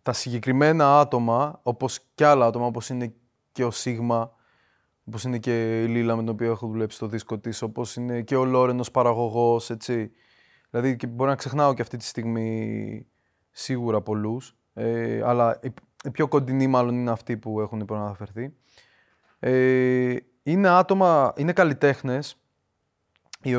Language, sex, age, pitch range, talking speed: Greek, male, 20-39, 120-160 Hz, 150 wpm